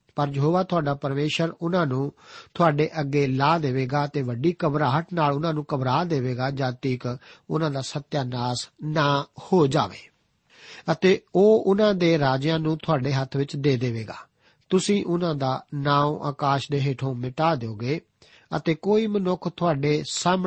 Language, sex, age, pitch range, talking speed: Punjabi, male, 50-69, 140-170 Hz, 115 wpm